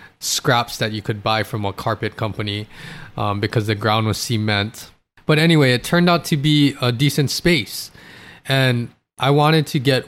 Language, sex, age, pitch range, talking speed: English, male, 20-39, 110-150 Hz, 180 wpm